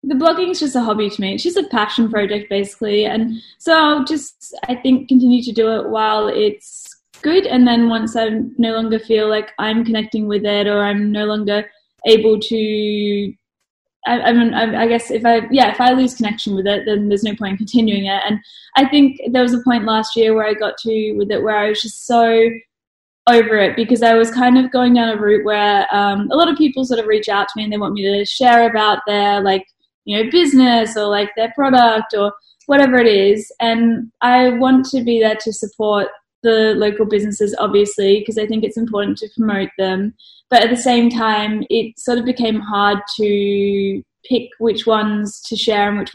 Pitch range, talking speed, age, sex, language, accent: 210-240 Hz, 215 wpm, 10-29, female, English, Australian